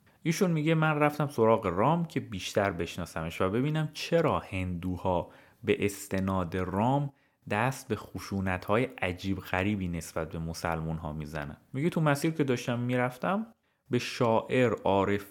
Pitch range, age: 95-140 Hz, 30-49